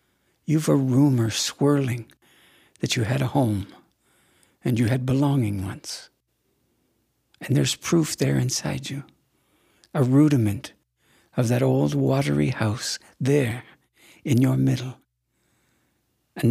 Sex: male